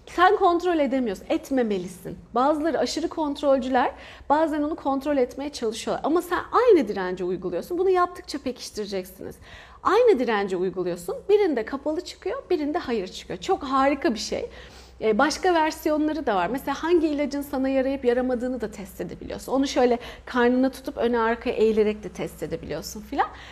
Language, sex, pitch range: Turkish, female, 210-315 Hz